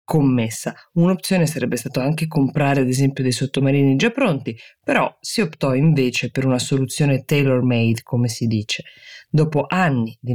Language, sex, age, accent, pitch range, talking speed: Italian, female, 20-39, native, 130-180 Hz, 155 wpm